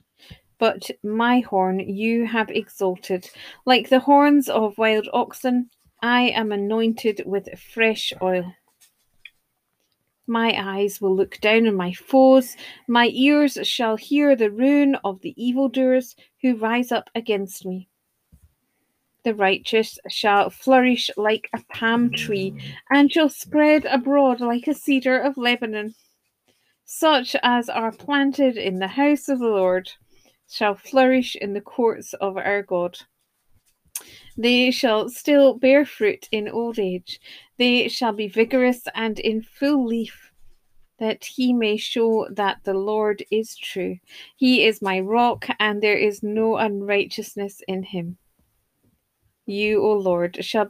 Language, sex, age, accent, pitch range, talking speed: English, female, 40-59, British, 205-255 Hz, 135 wpm